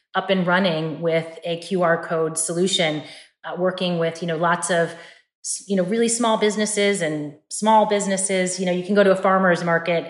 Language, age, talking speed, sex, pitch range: English, 30-49, 190 wpm, female, 165-190 Hz